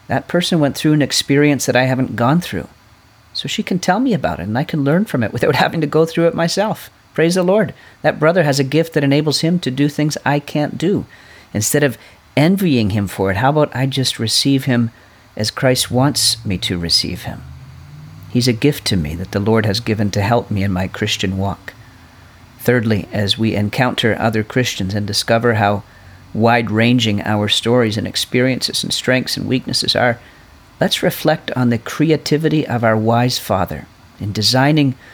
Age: 40-59